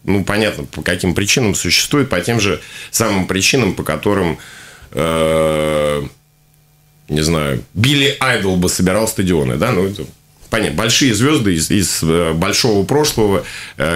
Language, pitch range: Russian, 95-140 Hz